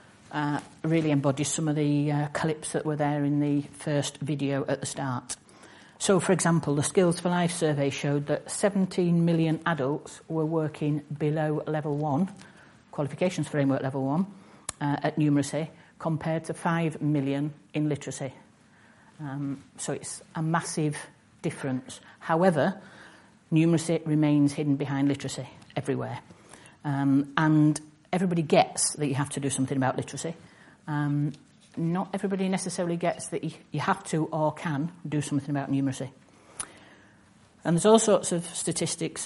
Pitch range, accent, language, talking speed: 145-165 Hz, British, English, 145 wpm